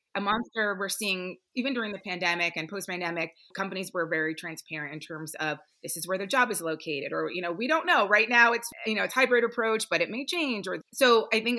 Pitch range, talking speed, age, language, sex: 165-205 Hz, 240 wpm, 30-49, English, female